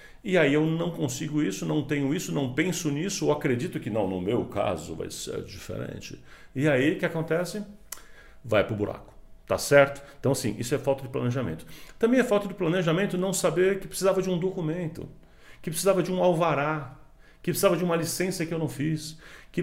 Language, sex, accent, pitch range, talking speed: Portuguese, male, Brazilian, 145-190 Hz, 205 wpm